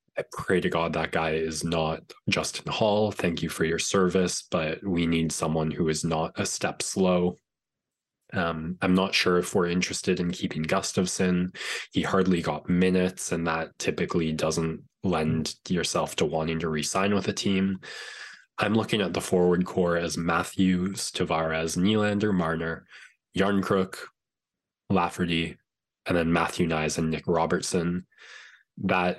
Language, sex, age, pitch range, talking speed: English, male, 20-39, 80-95 Hz, 150 wpm